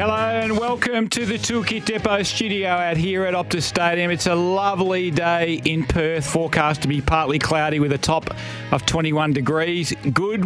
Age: 40-59